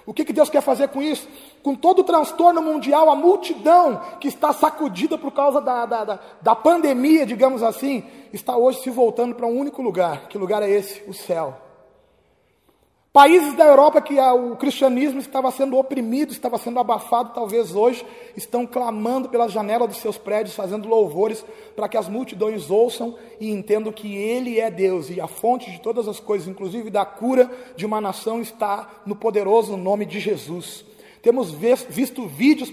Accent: Brazilian